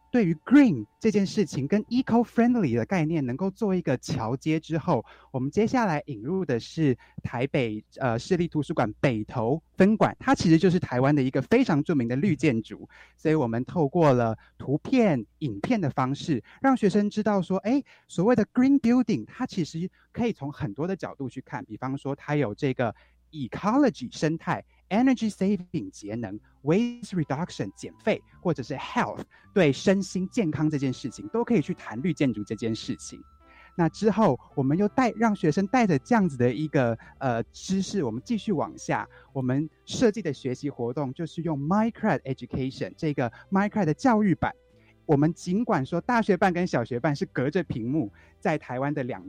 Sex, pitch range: male, 130-200 Hz